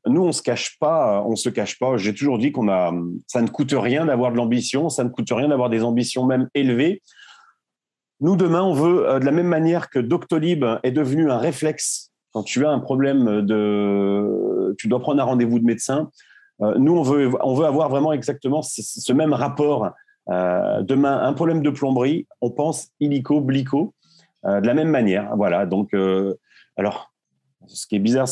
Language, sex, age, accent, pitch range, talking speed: French, male, 30-49, French, 105-145 Hz, 200 wpm